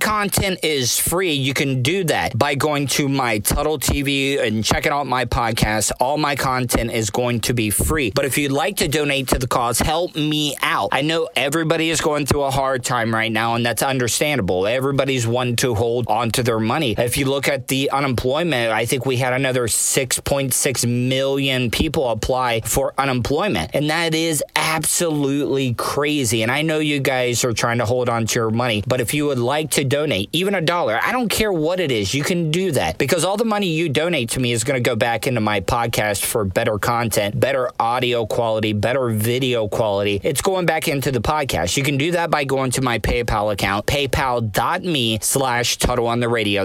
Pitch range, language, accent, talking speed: 115-150 Hz, English, American, 205 wpm